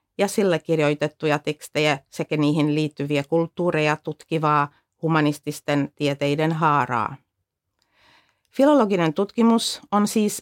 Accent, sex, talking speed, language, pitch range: native, female, 90 wpm, Finnish, 155-205 Hz